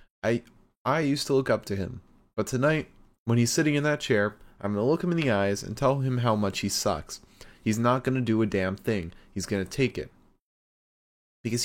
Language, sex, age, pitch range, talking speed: English, male, 20-39, 100-125 Hz, 230 wpm